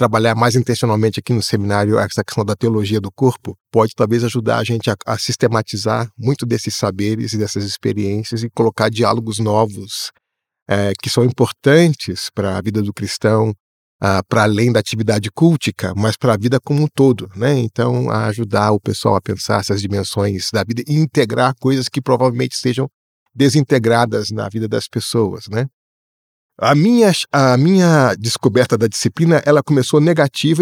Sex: male